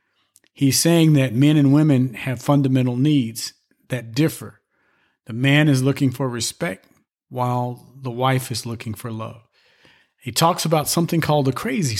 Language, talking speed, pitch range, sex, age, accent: English, 155 wpm, 125-155 Hz, male, 50-69, American